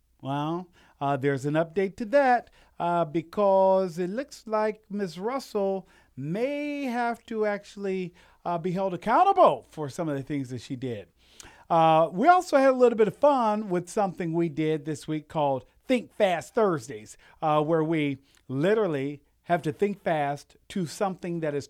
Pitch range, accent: 125-185 Hz, American